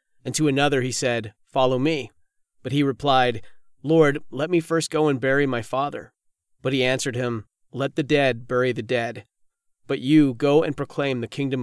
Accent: American